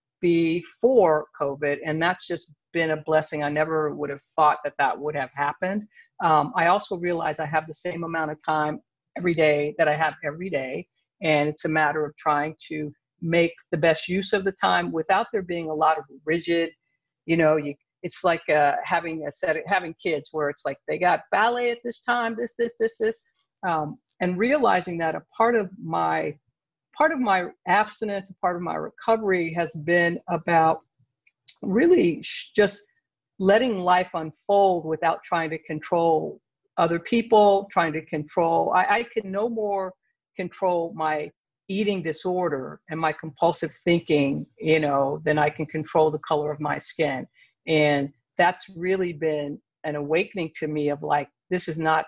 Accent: American